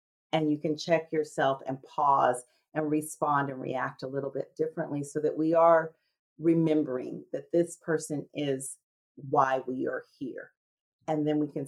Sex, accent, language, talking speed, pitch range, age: female, American, English, 165 wpm, 135-165 Hz, 40-59